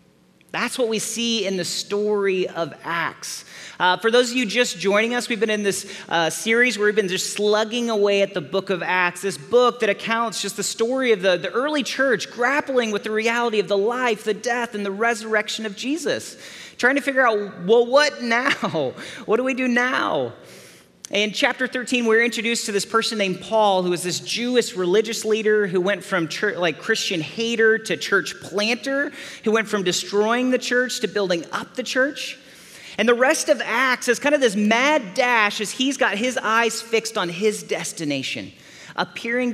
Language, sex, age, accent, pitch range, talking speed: English, male, 30-49, American, 195-250 Hz, 195 wpm